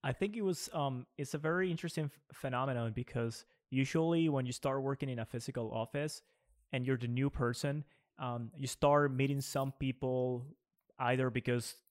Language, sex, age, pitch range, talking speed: English, male, 20-39, 125-150 Hz, 170 wpm